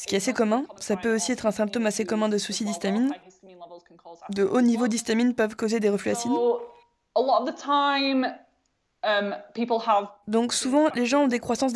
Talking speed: 165 wpm